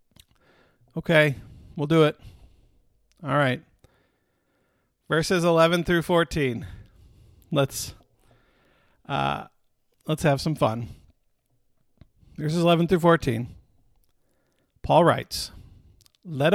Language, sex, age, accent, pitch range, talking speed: English, male, 50-69, American, 125-170 Hz, 85 wpm